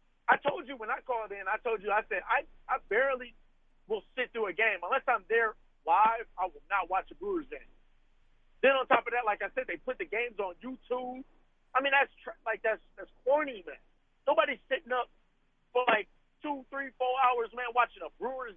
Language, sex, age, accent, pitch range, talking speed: English, male, 40-59, American, 220-280 Hz, 215 wpm